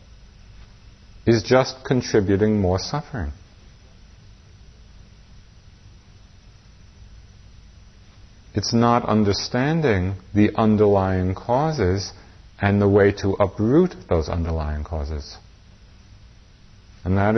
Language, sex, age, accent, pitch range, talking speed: English, male, 50-69, American, 95-105 Hz, 75 wpm